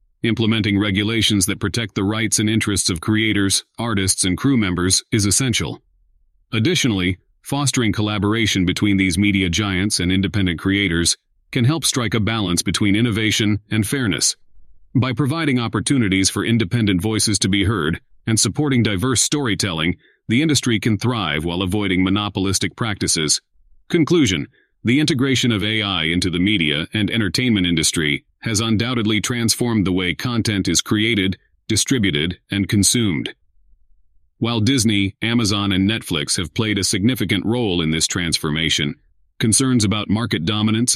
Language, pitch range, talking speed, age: English, 95-115 Hz, 140 wpm, 40-59